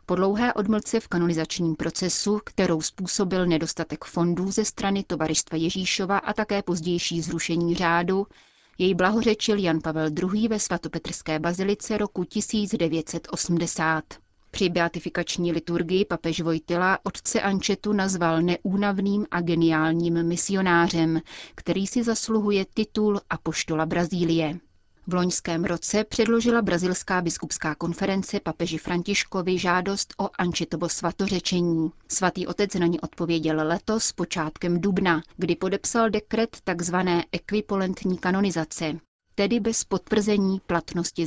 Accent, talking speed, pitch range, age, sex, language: native, 115 wpm, 165-200 Hz, 30-49, female, Czech